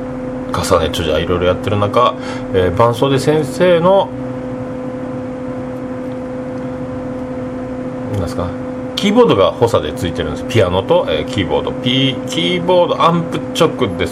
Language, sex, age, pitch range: Japanese, male, 40-59, 125-130 Hz